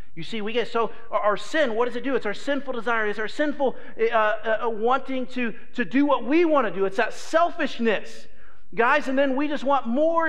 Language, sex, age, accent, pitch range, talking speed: English, male, 40-59, American, 190-295 Hz, 225 wpm